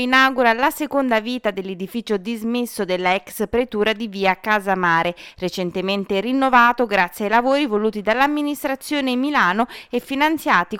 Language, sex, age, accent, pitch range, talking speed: Italian, female, 20-39, native, 195-255 Hz, 120 wpm